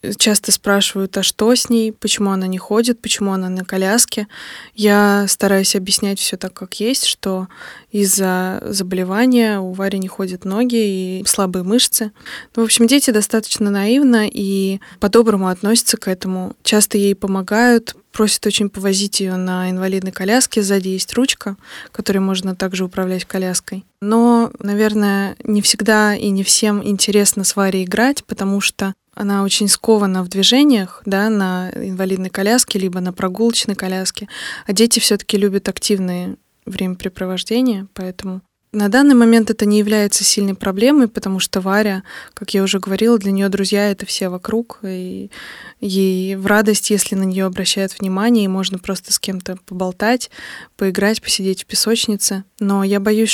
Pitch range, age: 190-215 Hz, 20-39